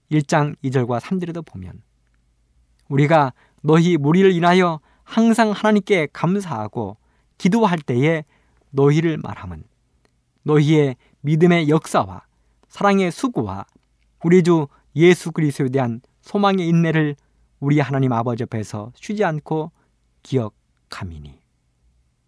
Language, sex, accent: Korean, male, native